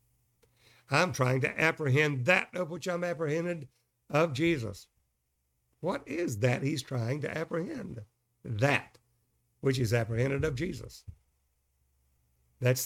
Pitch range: 120-150 Hz